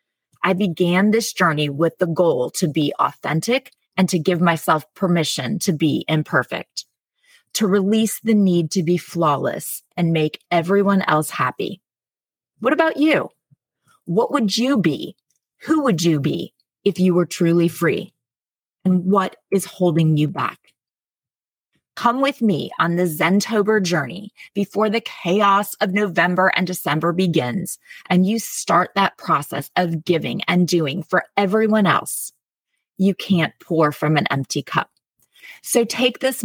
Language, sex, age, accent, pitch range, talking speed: English, female, 30-49, American, 160-205 Hz, 145 wpm